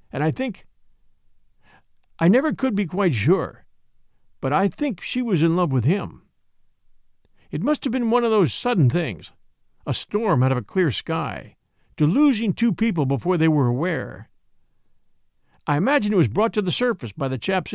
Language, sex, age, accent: English, male, 50-69, American